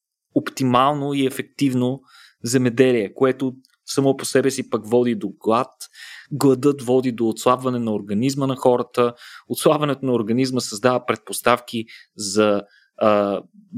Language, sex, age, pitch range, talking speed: Bulgarian, male, 20-39, 110-130 Hz, 120 wpm